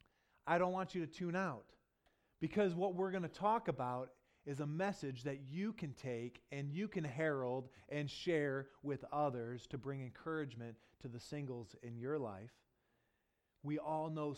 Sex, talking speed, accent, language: male, 170 wpm, American, English